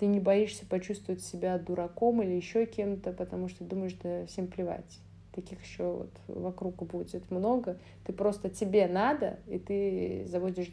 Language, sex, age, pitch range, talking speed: Russian, female, 20-39, 180-210 Hz, 155 wpm